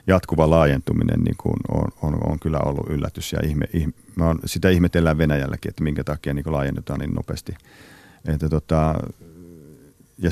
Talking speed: 155 wpm